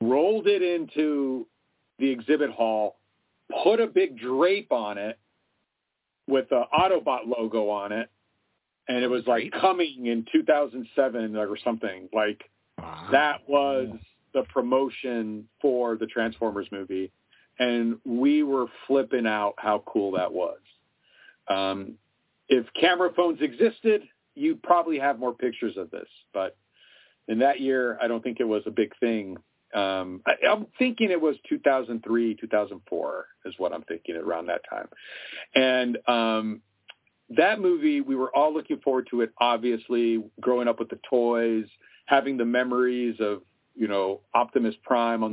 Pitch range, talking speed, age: 110-145 Hz, 145 wpm, 50-69